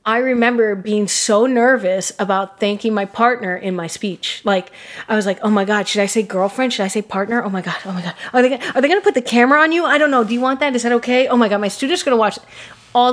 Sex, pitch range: female, 200-240 Hz